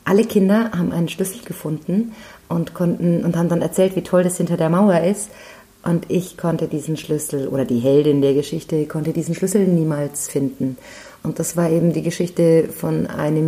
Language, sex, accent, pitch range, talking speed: German, female, German, 155-190 Hz, 185 wpm